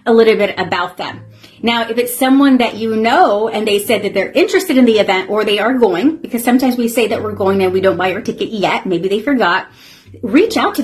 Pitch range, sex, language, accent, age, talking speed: 195-255 Hz, female, English, American, 30-49, 250 wpm